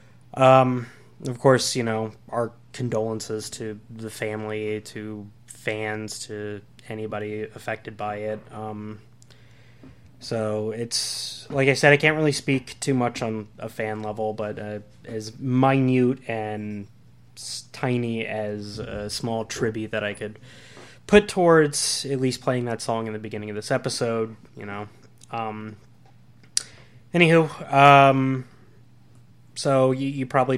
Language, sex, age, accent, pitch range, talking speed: English, male, 20-39, American, 110-125 Hz, 135 wpm